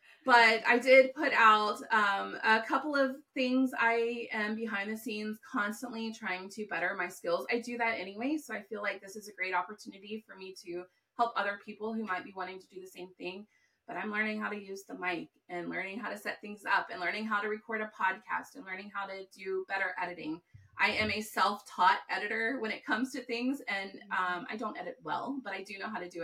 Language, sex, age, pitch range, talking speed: English, female, 30-49, 200-255 Hz, 230 wpm